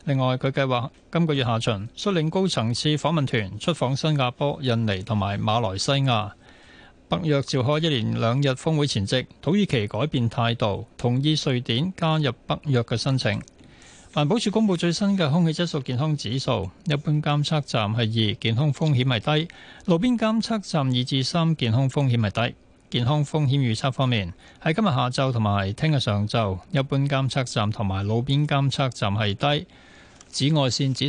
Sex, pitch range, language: male, 115-155 Hz, Chinese